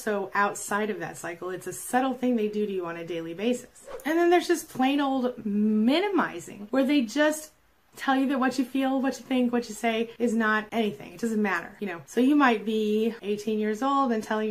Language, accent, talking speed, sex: English, American, 230 wpm, female